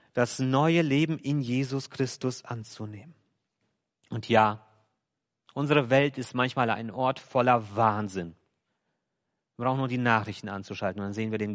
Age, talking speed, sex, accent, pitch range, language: 40-59, 145 wpm, male, German, 110-145 Hz, German